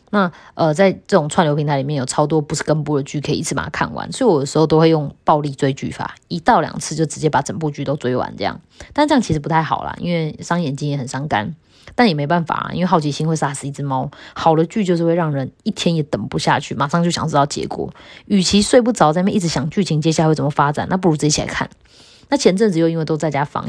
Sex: female